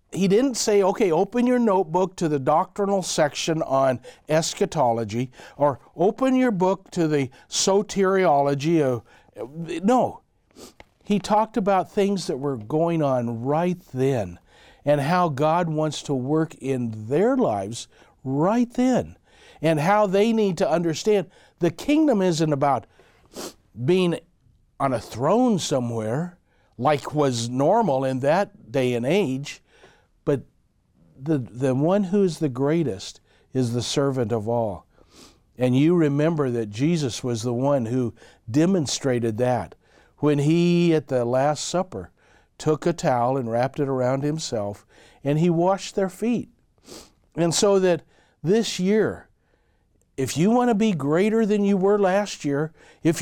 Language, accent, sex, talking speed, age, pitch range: English, American, male, 140 wpm, 60-79, 130-190 Hz